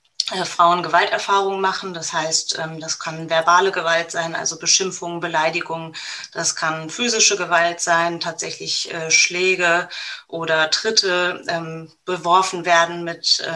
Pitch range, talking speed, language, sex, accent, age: 165-185 Hz, 110 wpm, German, female, German, 20-39